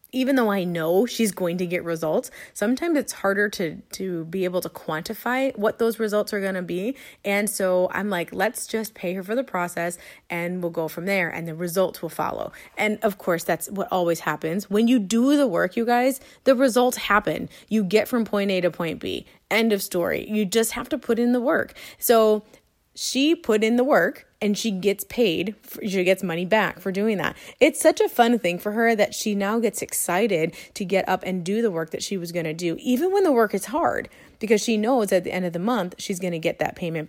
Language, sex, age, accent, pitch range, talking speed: English, female, 20-39, American, 180-235 Hz, 235 wpm